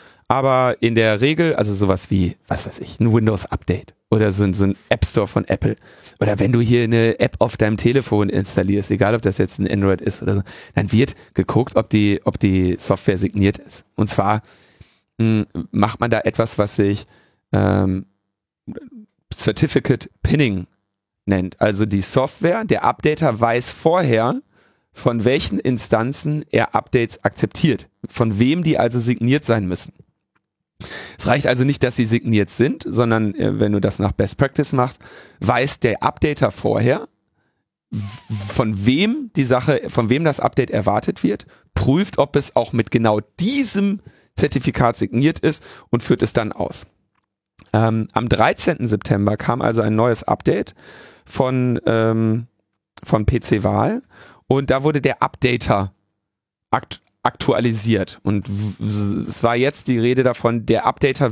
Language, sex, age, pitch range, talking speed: German, male, 30-49, 100-130 Hz, 155 wpm